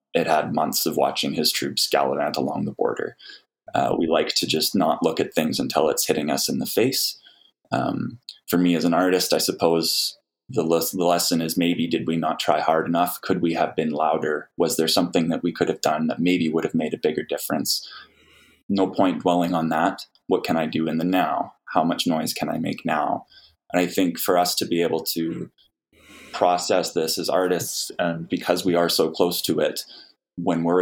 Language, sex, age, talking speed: English, male, 20-39, 210 wpm